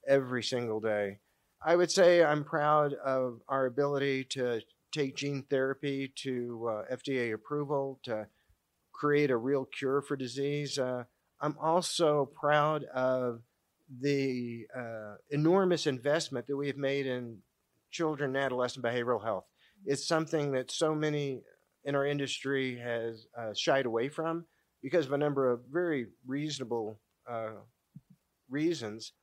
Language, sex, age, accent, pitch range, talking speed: English, male, 40-59, American, 120-145 Hz, 135 wpm